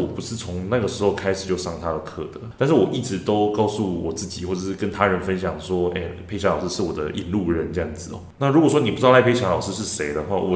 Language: Chinese